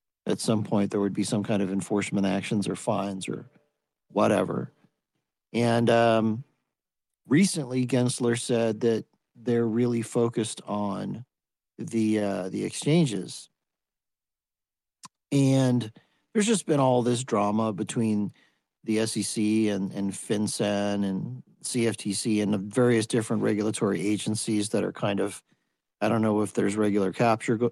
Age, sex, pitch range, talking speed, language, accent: 50-69, male, 100-120 Hz, 130 wpm, English, American